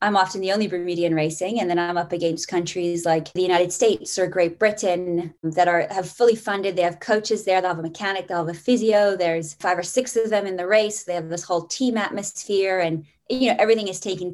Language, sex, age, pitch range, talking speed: English, female, 20-39, 170-195 Hz, 240 wpm